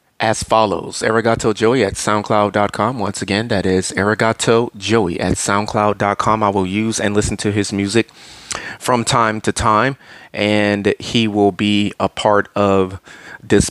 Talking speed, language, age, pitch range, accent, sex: 150 wpm, English, 30-49, 100-120 Hz, American, male